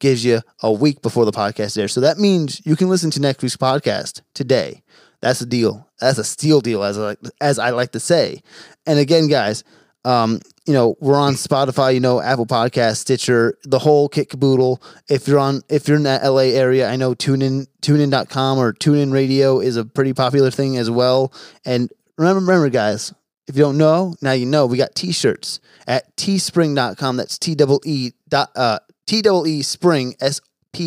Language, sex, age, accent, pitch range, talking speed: English, male, 20-39, American, 120-145 Hz, 195 wpm